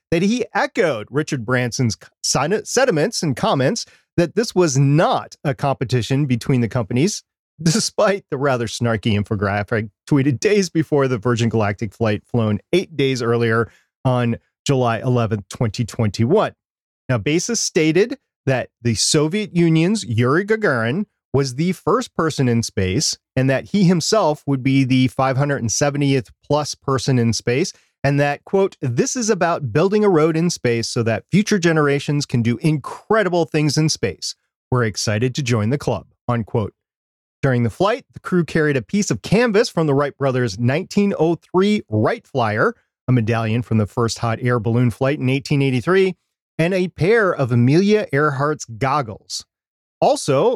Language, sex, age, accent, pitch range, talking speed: English, male, 30-49, American, 120-165 Hz, 155 wpm